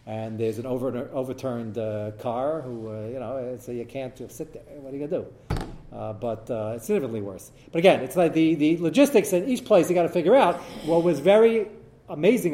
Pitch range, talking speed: 125-170 Hz, 220 wpm